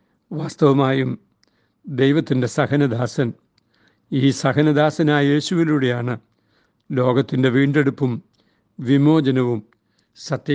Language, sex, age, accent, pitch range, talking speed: Malayalam, male, 60-79, native, 135-185 Hz, 55 wpm